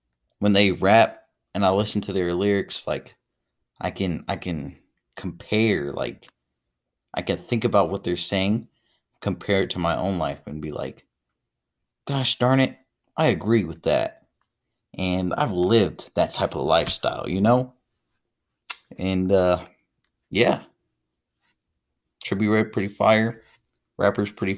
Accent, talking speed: American, 140 wpm